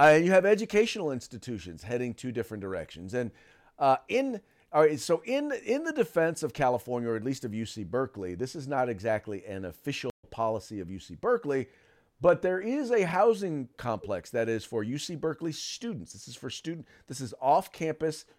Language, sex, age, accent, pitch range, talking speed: English, male, 40-59, American, 125-205 Hz, 185 wpm